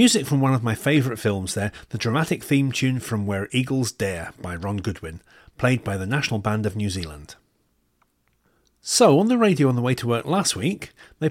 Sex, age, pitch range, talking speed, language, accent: male, 40-59, 105-140 Hz, 205 wpm, English, British